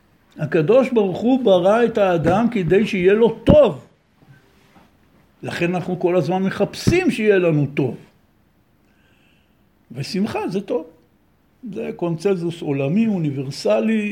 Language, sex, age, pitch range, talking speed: Hebrew, male, 60-79, 160-210 Hz, 105 wpm